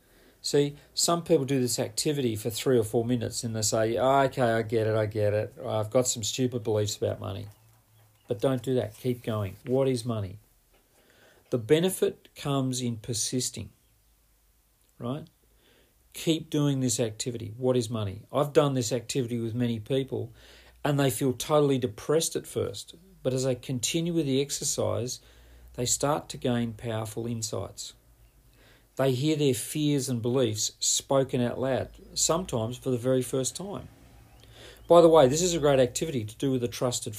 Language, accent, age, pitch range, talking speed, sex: English, Australian, 40-59, 115-135 Hz, 170 wpm, male